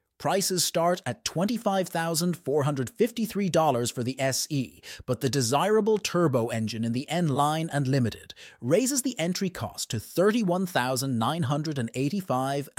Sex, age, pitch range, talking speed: male, 30-49, 125-175 Hz, 110 wpm